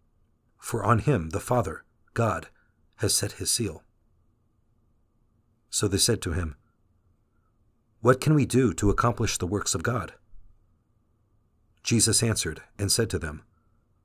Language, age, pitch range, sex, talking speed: English, 50-69, 100-110 Hz, male, 130 wpm